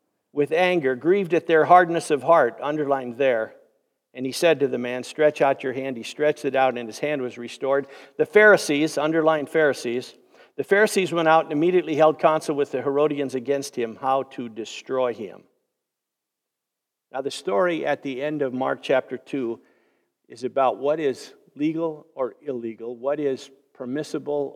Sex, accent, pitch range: male, American, 125-155 Hz